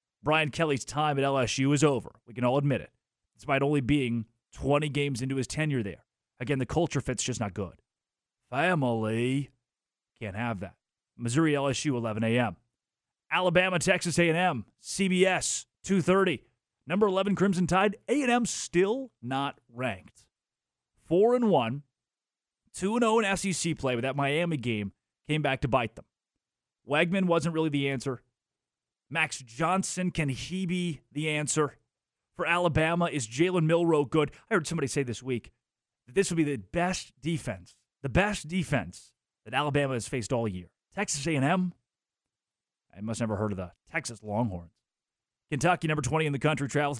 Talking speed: 155 wpm